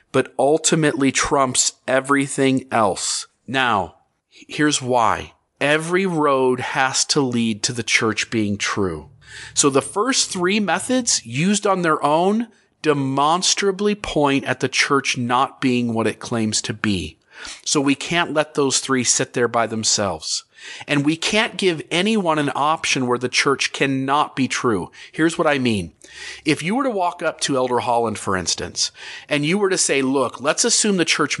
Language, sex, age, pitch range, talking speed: English, male, 40-59, 125-165 Hz, 165 wpm